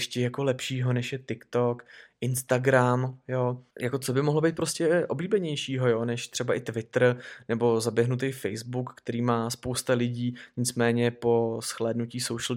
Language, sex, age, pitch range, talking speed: Czech, male, 20-39, 125-145 Hz, 150 wpm